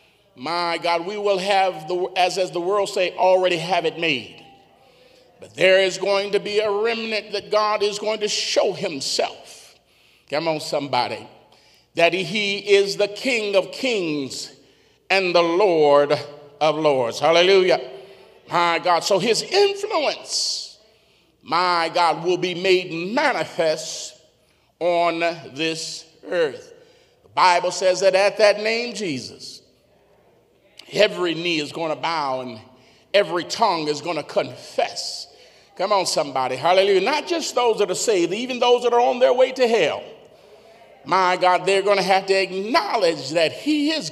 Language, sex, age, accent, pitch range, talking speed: English, male, 40-59, American, 165-210 Hz, 150 wpm